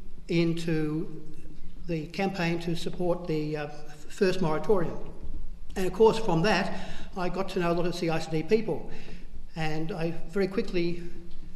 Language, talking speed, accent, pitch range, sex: English, 140 wpm, Australian, 165-195 Hz, male